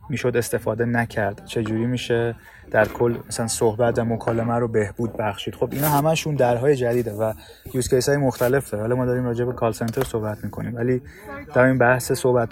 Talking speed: 180 wpm